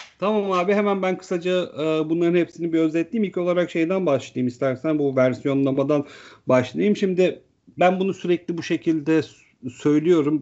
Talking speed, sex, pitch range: 145 wpm, male, 140-200 Hz